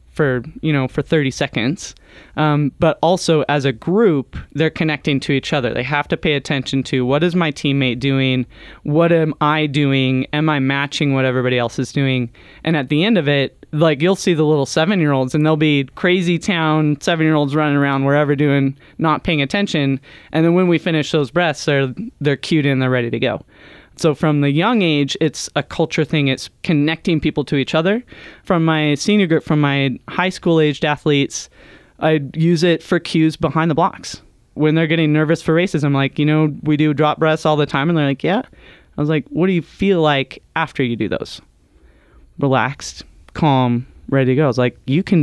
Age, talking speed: 20-39, 205 wpm